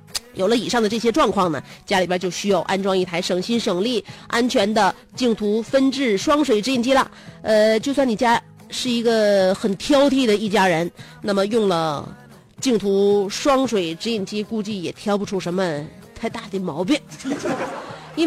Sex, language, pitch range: female, Chinese, 190-260 Hz